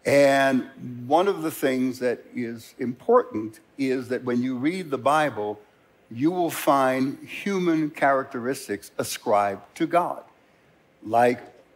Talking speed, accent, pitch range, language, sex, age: 120 wpm, American, 125-165 Hz, English, male, 60-79